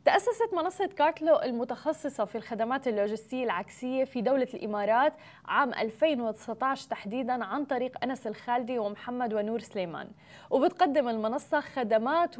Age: 20-39